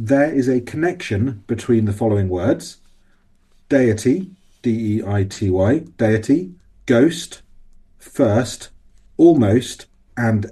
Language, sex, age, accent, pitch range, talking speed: English, male, 30-49, British, 100-130 Hz, 85 wpm